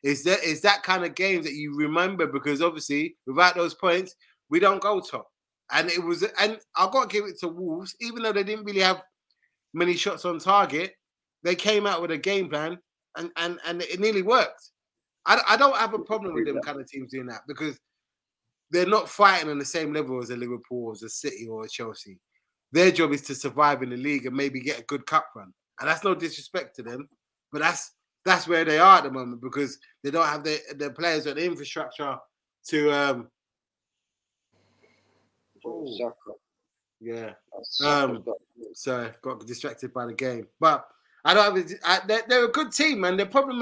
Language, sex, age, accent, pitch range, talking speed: English, male, 20-39, British, 145-200 Hz, 205 wpm